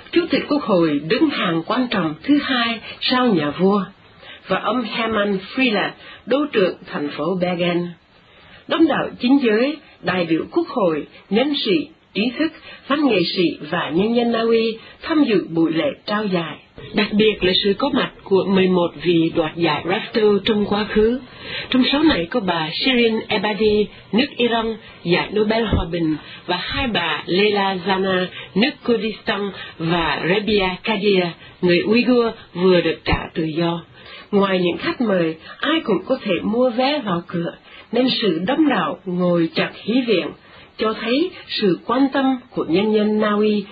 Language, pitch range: Vietnamese, 175-245 Hz